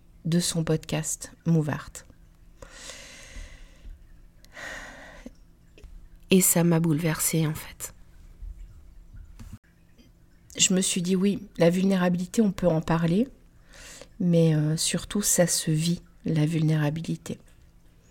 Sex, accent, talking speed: female, French, 95 wpm